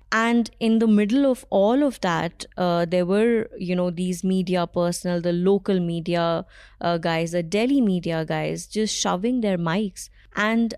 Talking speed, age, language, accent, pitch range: 165 wpm, 20-39, English, Indian, 175-205 Hz